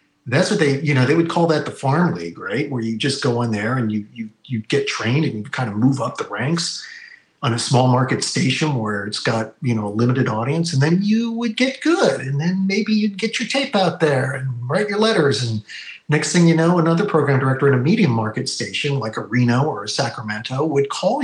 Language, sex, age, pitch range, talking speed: English, male, 40-59, 120-170 Hz, 245 wpm